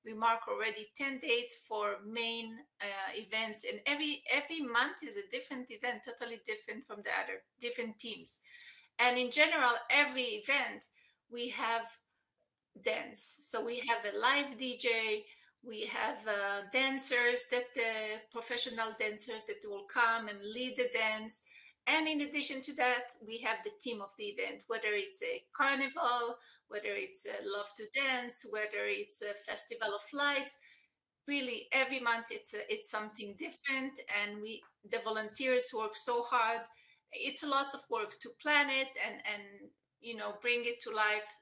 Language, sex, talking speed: English, female, 165 wpm